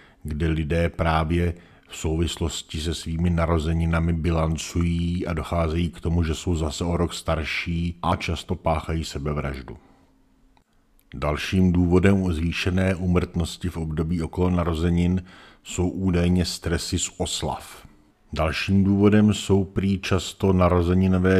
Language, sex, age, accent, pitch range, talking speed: Czech, male, 50-69, native, 80-90 Hz, 120 wpm